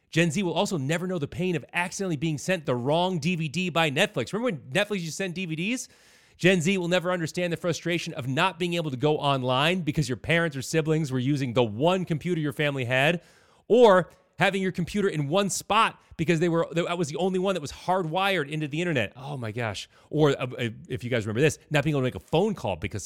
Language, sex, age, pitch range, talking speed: English, male, 30-49, 125-180 Hz, 235 wpm